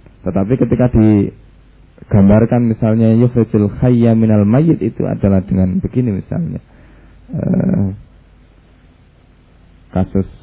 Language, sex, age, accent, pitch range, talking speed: Indonesian, male, 20-39, native, 90-115 Hz, 75 wpm